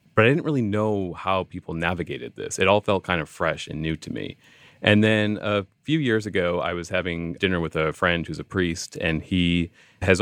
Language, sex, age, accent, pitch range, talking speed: English, male, 30-49, American, 85-105 Hz, 225 wpm